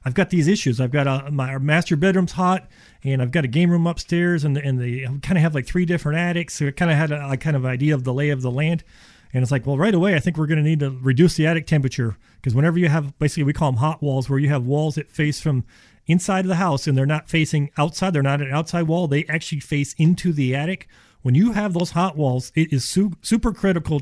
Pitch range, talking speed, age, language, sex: 135-170 Hz, 270 wpm, 40-59, English, male